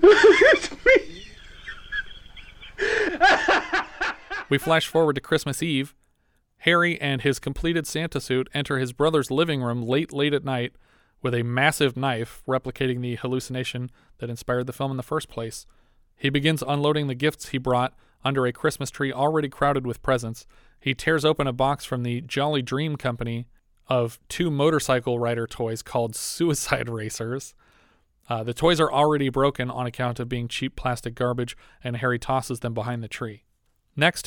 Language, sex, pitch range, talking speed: English, male, 120-145 Hz, 160 wpm